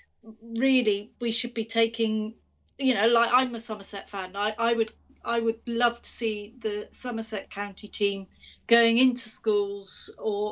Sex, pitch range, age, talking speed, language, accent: female, 220-245 Hz, 40-59, 160 wpm, English, British